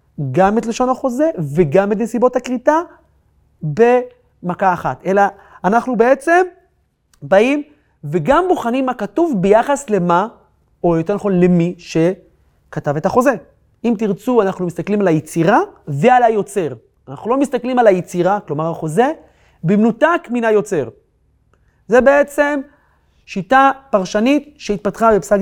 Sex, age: male, 30-49